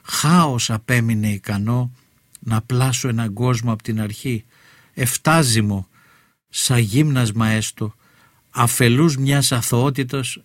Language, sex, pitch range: Greek, male, 110-130 Hz